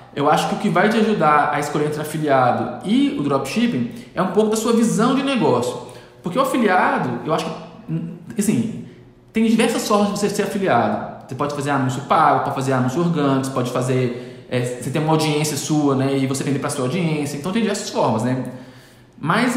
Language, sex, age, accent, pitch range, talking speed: Portuguese, male, 20-39, Brazilian, 150-225 Hz, 210 wpm